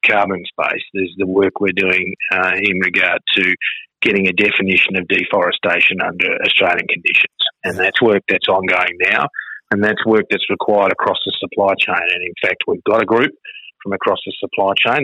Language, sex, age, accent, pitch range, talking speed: English, male, 30-49, Australian, 100-115 Hz, 185 wpm